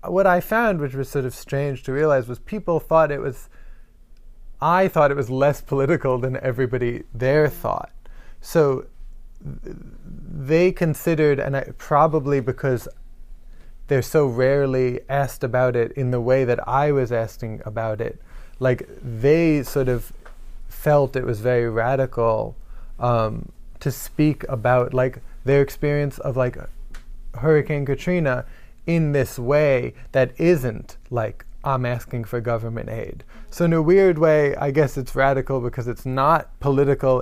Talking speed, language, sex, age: 145 wpm, English, male, 20-39